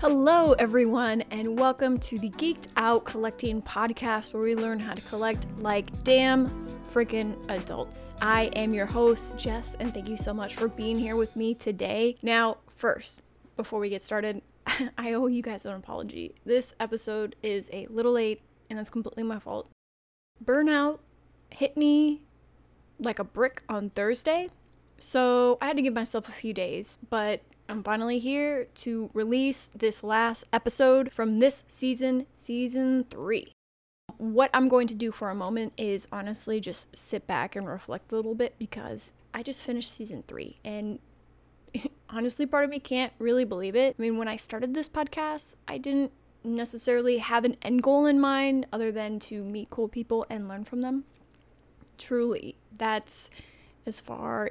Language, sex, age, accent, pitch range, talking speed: English, female, 20-39, American, 220-255 Hz, 170 wpm